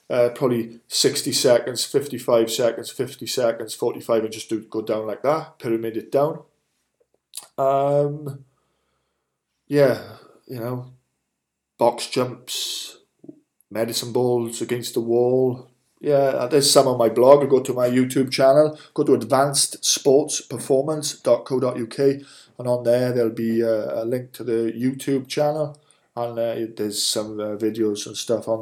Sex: male